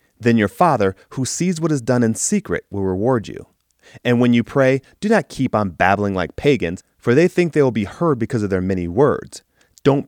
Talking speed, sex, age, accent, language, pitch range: 220 wpm, male, 30-49, American, English, 105-145 Hz